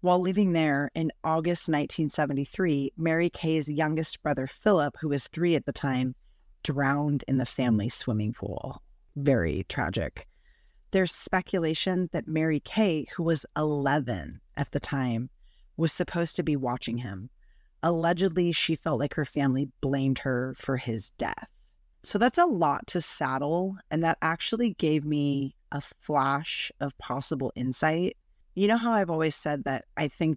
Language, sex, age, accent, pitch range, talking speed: English, female, 30-49, American, 140-170 Hz, 155 wpm